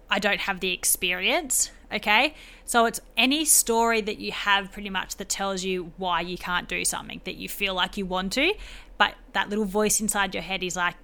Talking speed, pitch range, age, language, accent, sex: 210 wpm, 180-215 Hz, 20-39, English, Australian, female